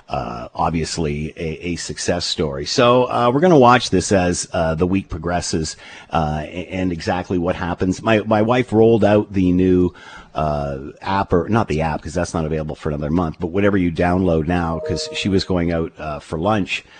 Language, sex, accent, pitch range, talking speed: English, male, American, 85-105 Hz, 200 wpm